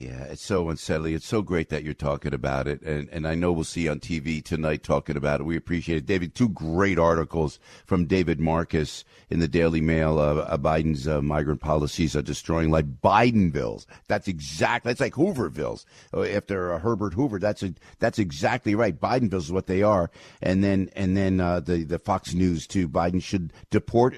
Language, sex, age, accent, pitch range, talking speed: English, male, 50-69, American, 85-110 Hz, 200 wpm